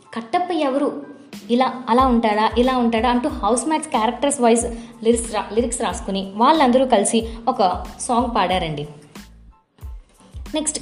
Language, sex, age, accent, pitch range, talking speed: Telugu, female, 20-39, native, 225-280 Hz, 120 wpm